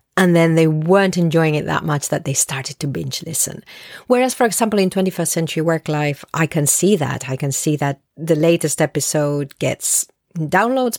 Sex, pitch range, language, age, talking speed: female, 155-210 Hz, English, 40-59, 190 wpm